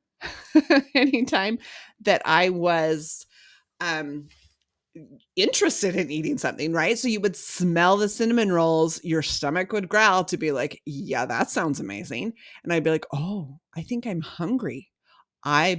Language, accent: English, American